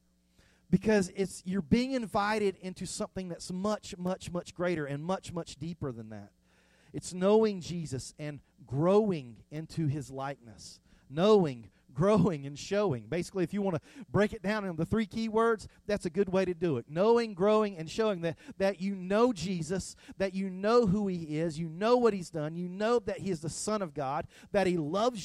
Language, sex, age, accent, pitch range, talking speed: English, male, 40-59, American, 160-210 Hz, 190 wpm